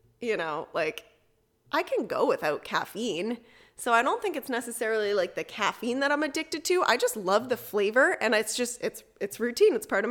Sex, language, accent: female, English, American